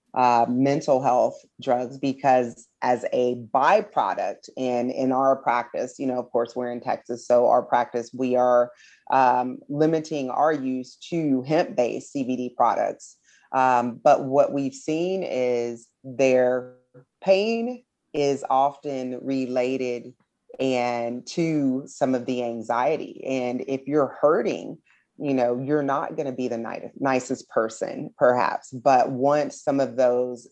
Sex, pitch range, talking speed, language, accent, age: female, 125-135 Hz, 140 wpm, English, American, 30-49